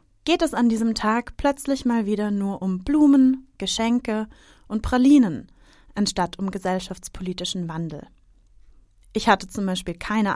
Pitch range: 190-245 Hz